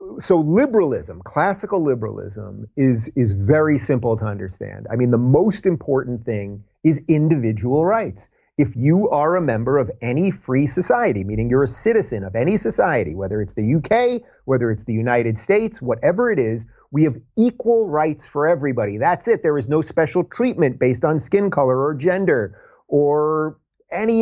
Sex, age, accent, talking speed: male, 30-49, American, 170 wpm